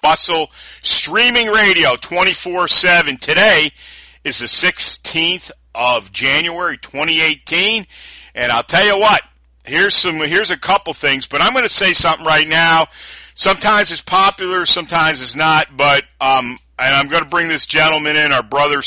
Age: 50-69